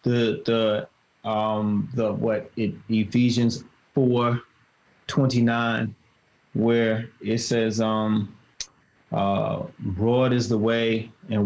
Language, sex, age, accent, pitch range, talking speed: English, male, 20-39, American, 105-120 Hz, 100 wpm